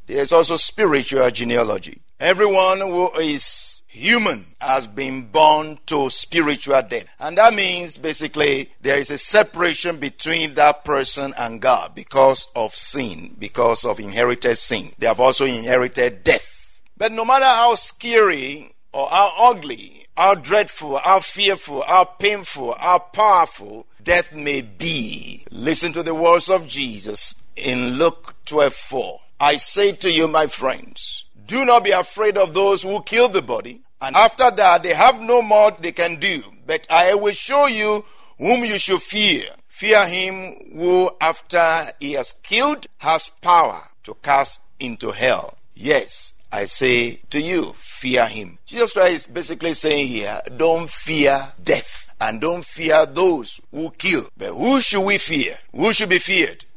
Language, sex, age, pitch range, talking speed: English, male, 50-69, 140-200 Hz, 155 wpm